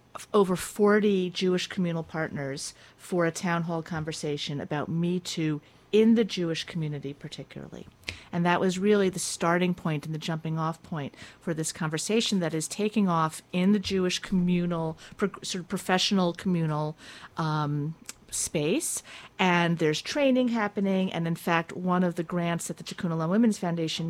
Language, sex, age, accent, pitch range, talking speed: English, female, 40-59, American, 155-190 Hz, 155 wpm